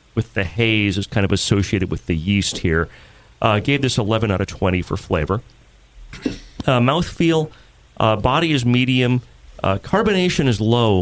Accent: American